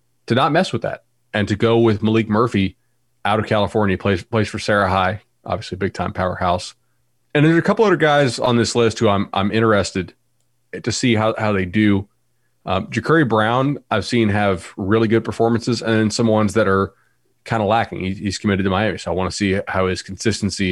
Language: English